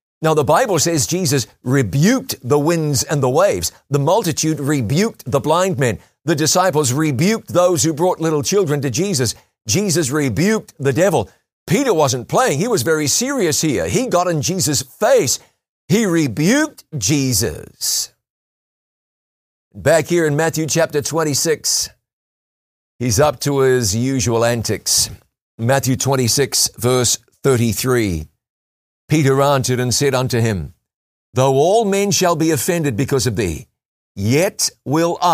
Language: English